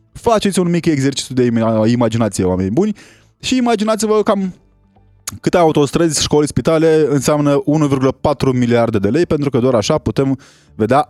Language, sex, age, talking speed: Romanian, male, 20-39, 140 wpm